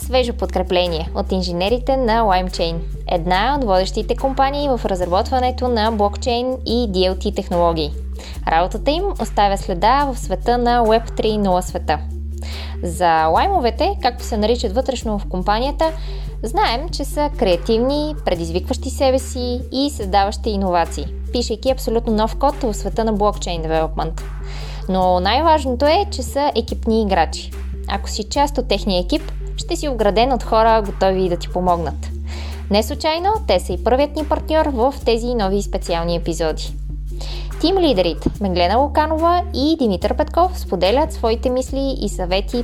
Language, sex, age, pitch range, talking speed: Bulgarian, female, 20-39, 180-260 Hz, 140 wpm